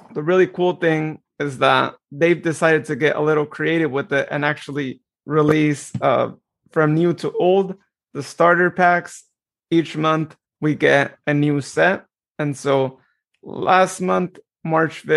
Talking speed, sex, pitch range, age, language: 150 wpm, male, 150-165 Hz, 30-49, English